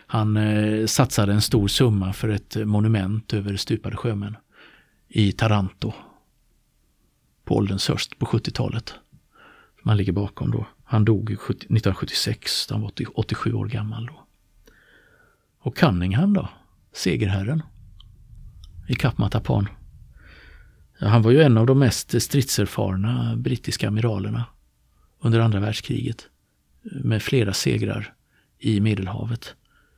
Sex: male